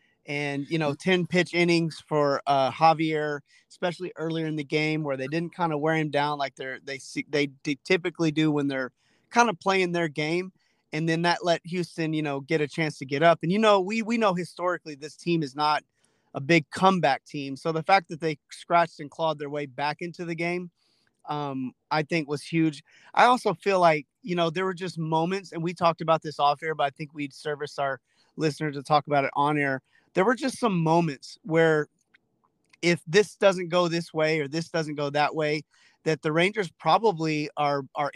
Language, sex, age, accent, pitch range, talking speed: English, male, 30-49, American, 150-170 Hz, 215 wpm